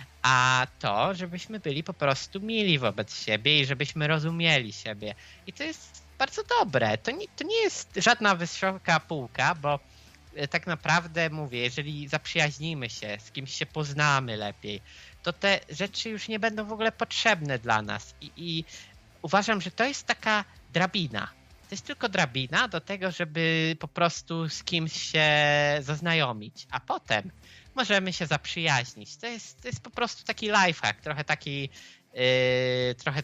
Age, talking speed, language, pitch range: 20-39, 150 wpm, Polish, 125-175 Hz